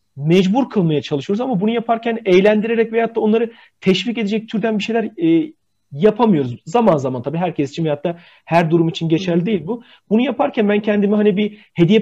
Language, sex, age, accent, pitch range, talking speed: Turkish, male, 40-59, native, 170-225 Hz, 185 wpm